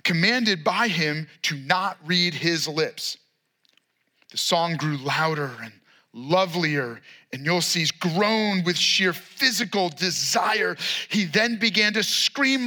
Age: 30-49